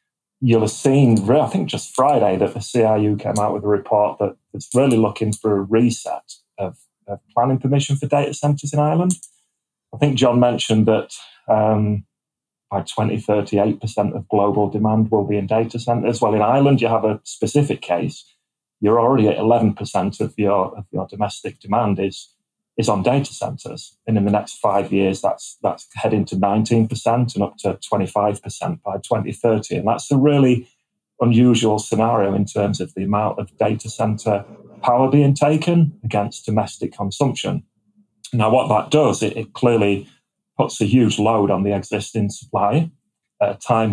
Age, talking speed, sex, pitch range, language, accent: 30-49, 175 wpm, male, 105-125 Hz, English, British